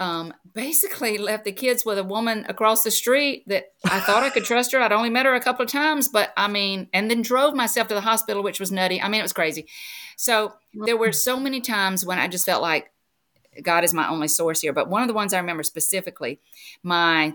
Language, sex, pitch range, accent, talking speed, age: English, female, 165-225 Hz, American, 240 wpm, 50-69